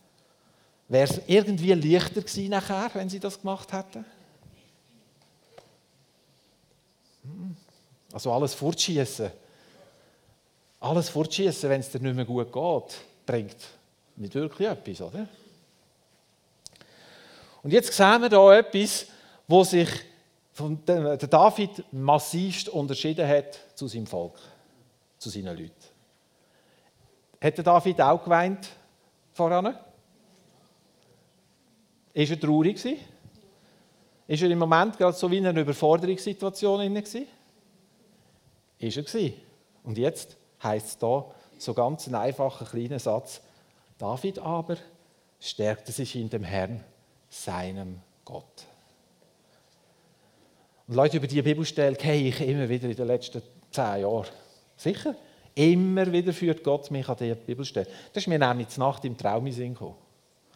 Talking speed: 120 wpm